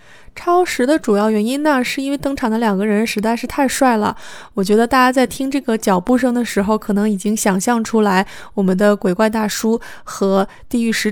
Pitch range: 195-250 Hz